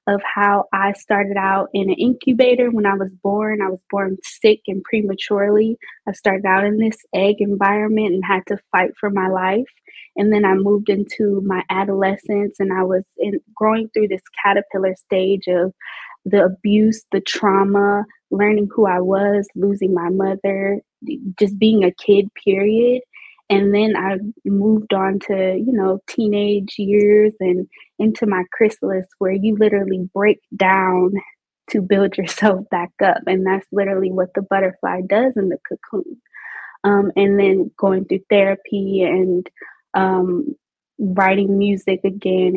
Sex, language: female, English